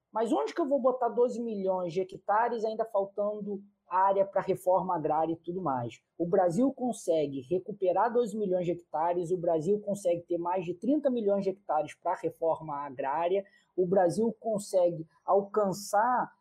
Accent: Brazilian